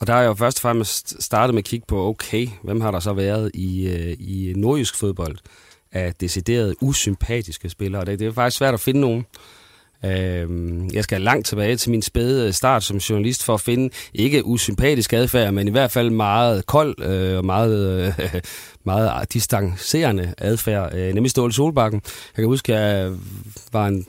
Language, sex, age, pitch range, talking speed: Danish, male, 30-49, 100-125 Hz, 175 wpm